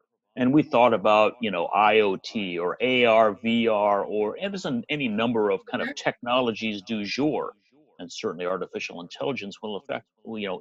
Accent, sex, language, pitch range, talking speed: American, male, English, 115-155 Hz, 155 wpm